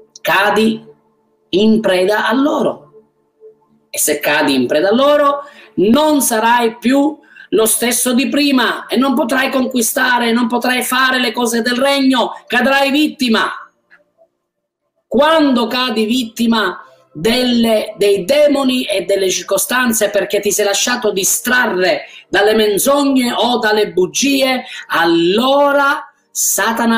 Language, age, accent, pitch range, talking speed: Italian, 30-49, native, 200-265 Hz, 115 wpm